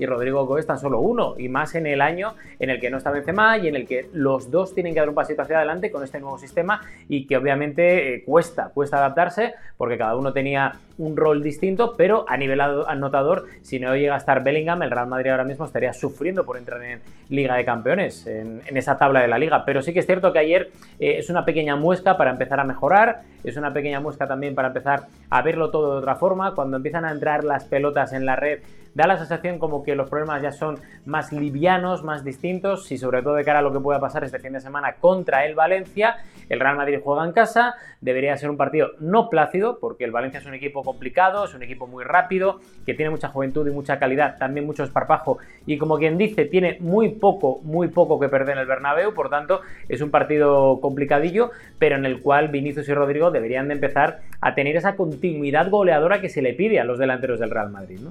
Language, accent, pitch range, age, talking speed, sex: Spanish, Spanish, 135-170 Hz, 20-39, 235 wpm, male